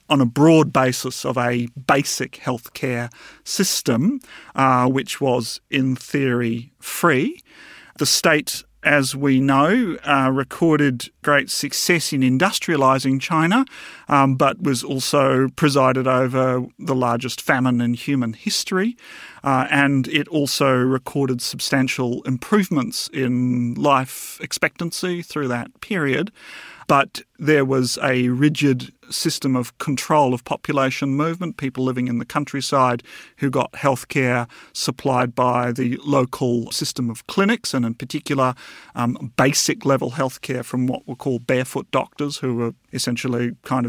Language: English